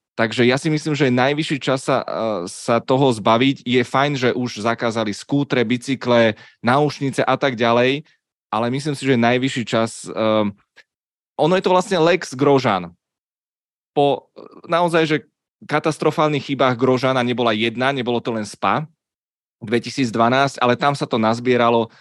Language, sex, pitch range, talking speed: Czech, male, 115-150 Hz, 145 wpm